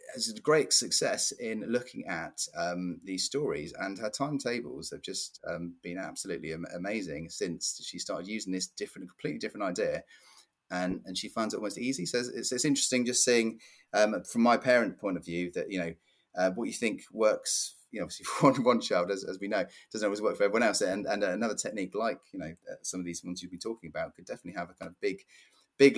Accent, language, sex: British, English, male